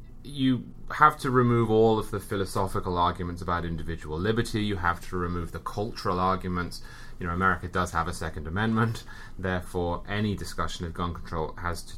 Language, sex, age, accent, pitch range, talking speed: English, male, 30-49, British, 85-115 Hz, 175 wpm